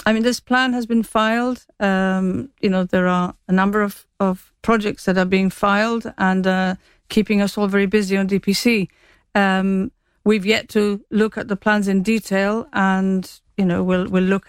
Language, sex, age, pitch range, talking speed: English, female, 50-69, 190-210 Hz, 190 wpm